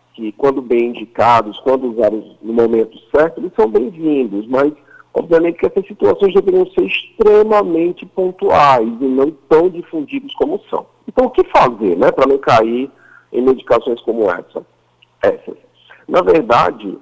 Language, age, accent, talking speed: Portuguese, 50-69, Brazilian, 150 wpm